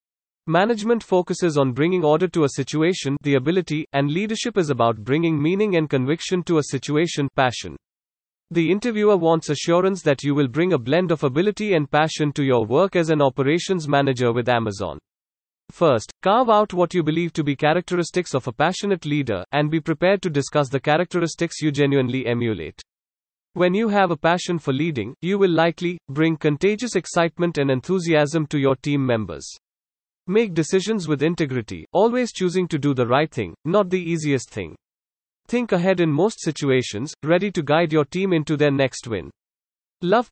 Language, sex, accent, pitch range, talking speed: English, male, Indian, 135-180 Hz, 175 wpm